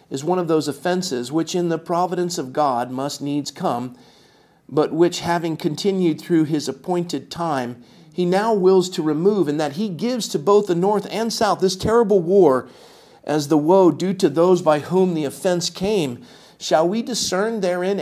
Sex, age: male, 50-69